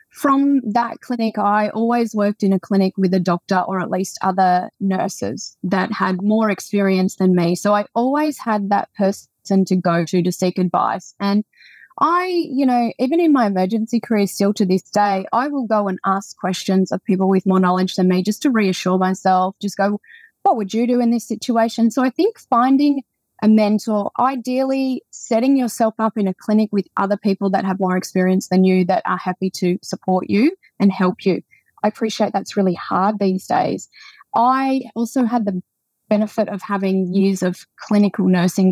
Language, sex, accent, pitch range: English, female, Australian, 185-225 Hz